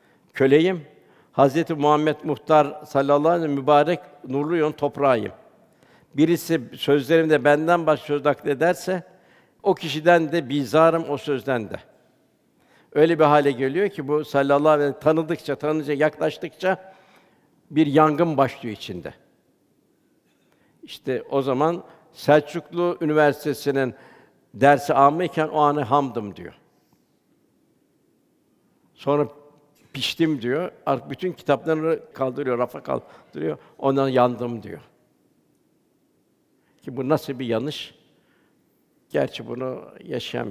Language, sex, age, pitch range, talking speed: Turkish, male, 60-79, 135-160 Hz, 105 wpm